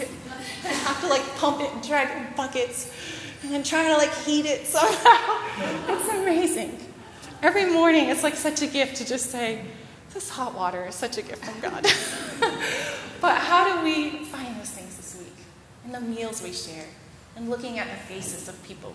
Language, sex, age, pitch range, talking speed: English, female, 20-39, 185-275 Hz, 185 wpm